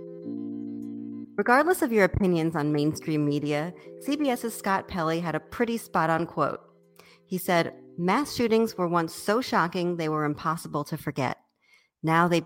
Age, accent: 40-59, American